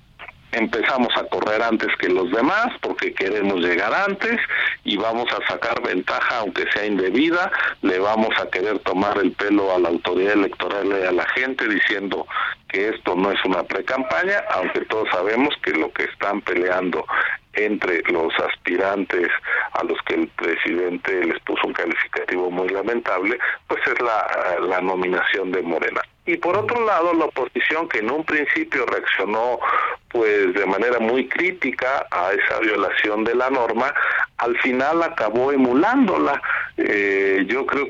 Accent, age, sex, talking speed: Mexican, 50-69, male, 155 wpm